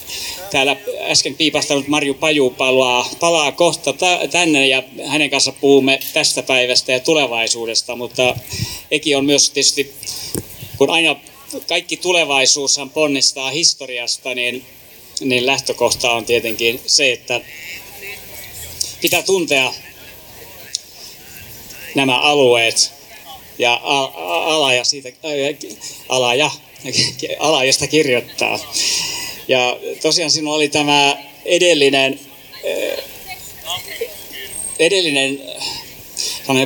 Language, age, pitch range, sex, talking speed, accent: Finnish, 30-49, 125-150 Hz, male, 90 wpm, native